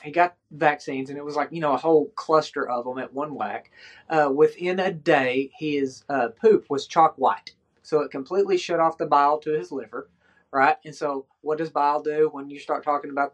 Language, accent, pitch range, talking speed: English, American, 140-175 Hz, 220 wpm